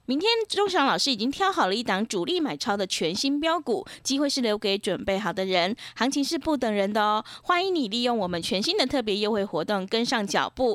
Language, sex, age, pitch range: Chinese, female, 20-39, 205-305 Hz